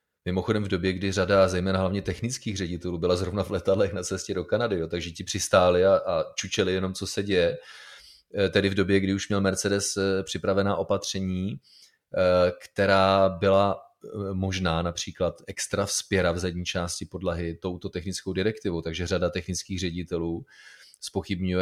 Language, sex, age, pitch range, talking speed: Czech, male, 30-49, 90-110 Hz, 155 wpm